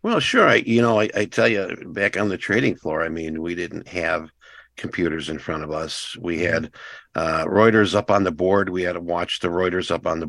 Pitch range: 90-115 Hz